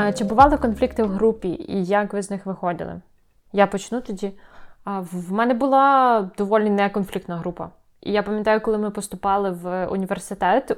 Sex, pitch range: female, 180-215 Hz